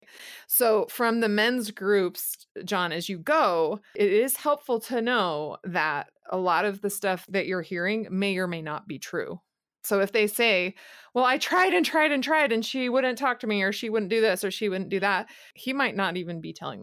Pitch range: 190-245 Hz